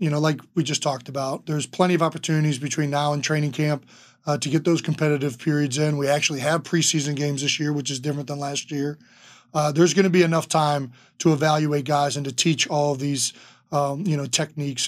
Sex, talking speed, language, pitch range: male, 225 wpm, English, 145-165 Hz